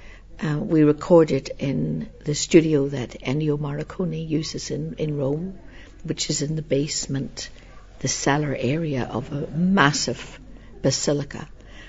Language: English